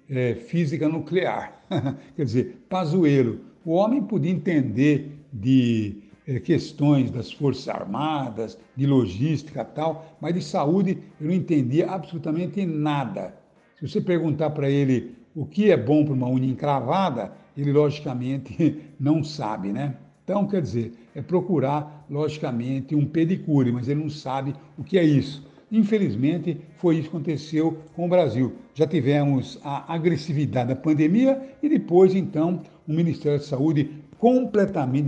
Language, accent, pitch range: Portuguese, Brazilian, 135-165 Hz